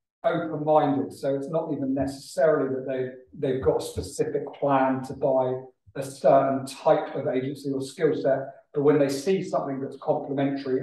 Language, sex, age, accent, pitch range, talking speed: English, male, 40-59, British, 125-140 Hz, 165 wpm